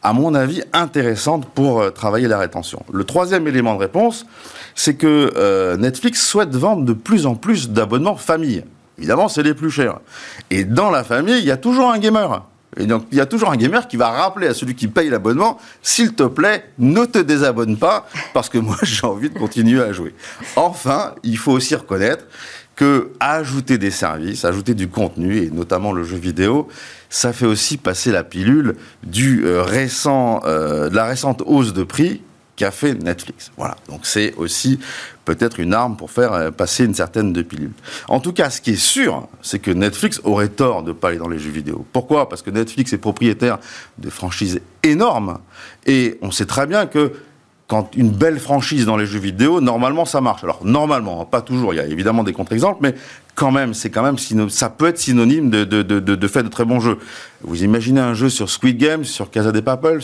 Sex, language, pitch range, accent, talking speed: male, French, 105-145 Hz, French, 205 wpm